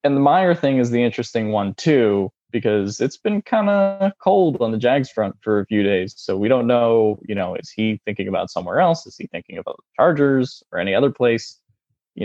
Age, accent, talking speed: 10-29, American, 225 wpm